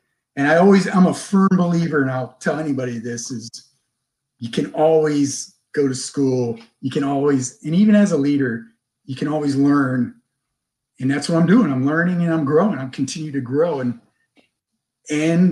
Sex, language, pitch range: male, English, 135-190 Hz